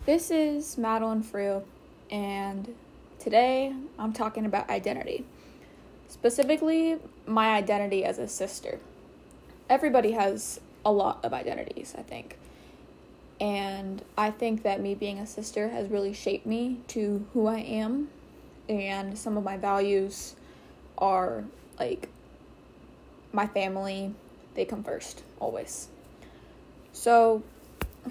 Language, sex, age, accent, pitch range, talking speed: English, female, 10-29, American, 200-230 Hz, 115 wpm